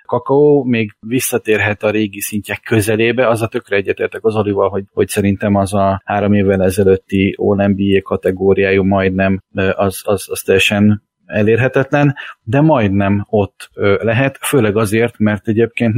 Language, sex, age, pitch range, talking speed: Hungarian, male, 30-49, 100-120 Hz, 135 wpm